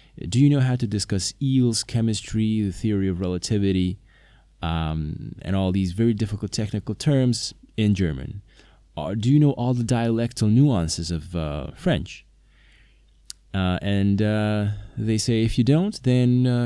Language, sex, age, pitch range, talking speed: English, male, 20-39, 80-110 Hz, 155 wpm